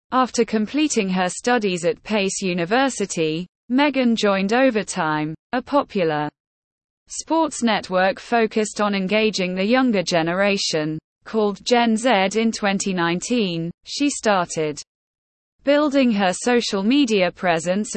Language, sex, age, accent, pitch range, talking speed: English, female, 20-39, British, 180-240 Hz, 105 wpm